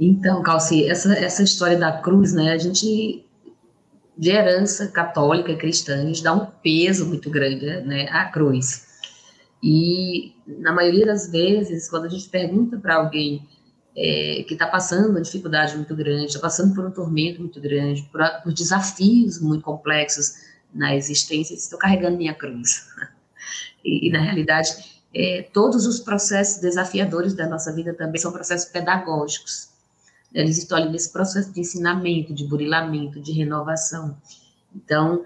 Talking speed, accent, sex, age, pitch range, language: 150 wpm, Brazilian, female, 20-39, 155-190 Hz, Portuguese